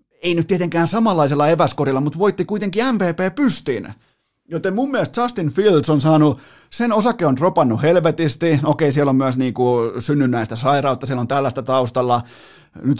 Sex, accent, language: male, native, Finnish